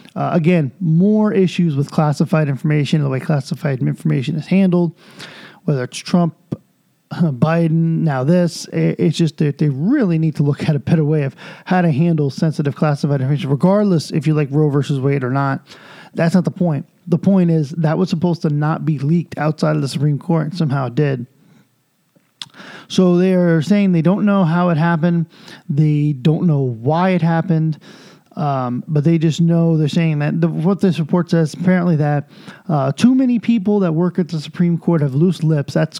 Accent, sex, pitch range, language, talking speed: American, male, 150-180 Hz, English, 190 wpm